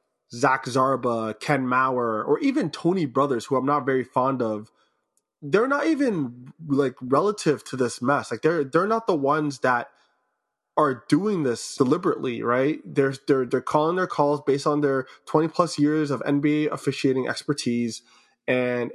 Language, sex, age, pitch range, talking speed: English, male, 20-39, 125-155 Hz, 160 wpm